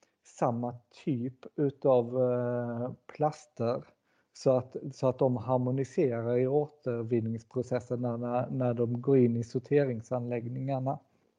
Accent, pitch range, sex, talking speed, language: native, 120-140 Hz, male, 100 wpm, Swedish